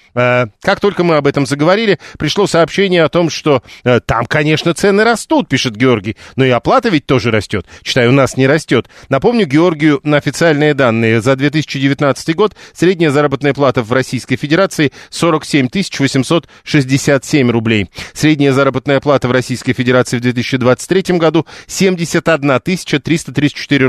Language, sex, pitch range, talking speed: Russian, male, 130-165 Hz, 140 wpm